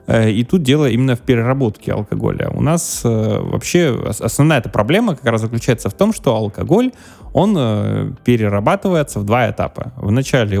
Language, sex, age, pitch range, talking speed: Russian, male, 20-39, 110-140 Hz, 145 wpm